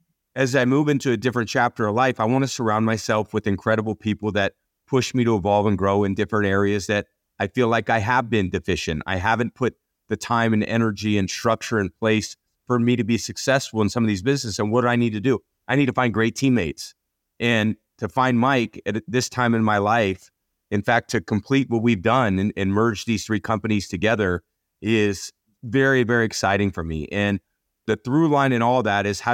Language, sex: English, male